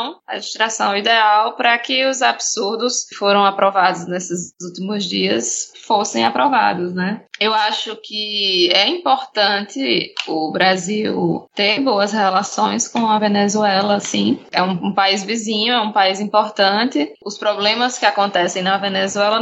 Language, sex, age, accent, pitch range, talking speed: Portuguese, female, 10-29, Brazilian, 200-250 Hz, 140 wpm